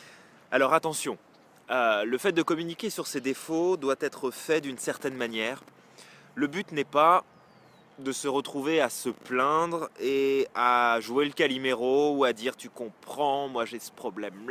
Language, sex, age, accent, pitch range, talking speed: French, male, 20-39, French, 135-180 Hz, 165 wpm